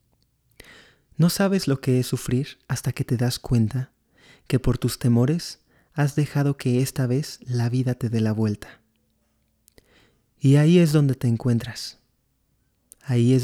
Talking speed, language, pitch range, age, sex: 150 wpm, Spanish, 115-135 Hz, 30-49, male